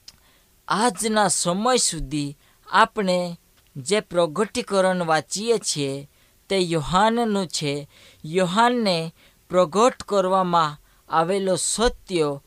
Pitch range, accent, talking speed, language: 155-205 Hz, native, 60 wpm, Hindi